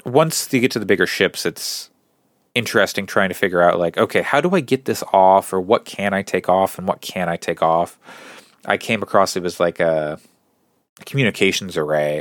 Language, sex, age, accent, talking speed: English, male, 30-49, American, 205 wpm